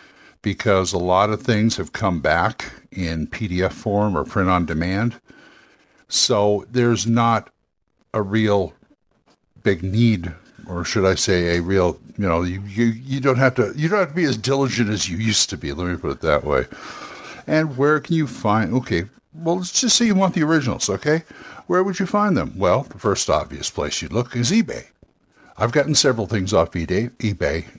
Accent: American